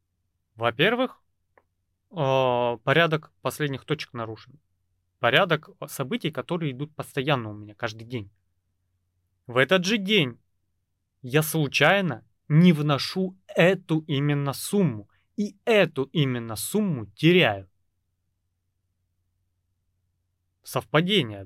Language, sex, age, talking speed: Russian, male, 30-49, 85 wpm